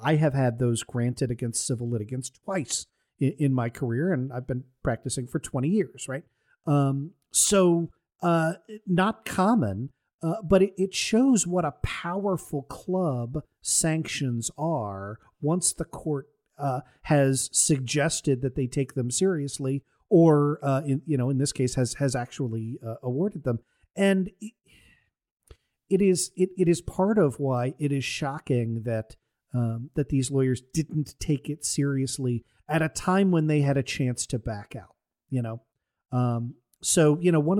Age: 50-69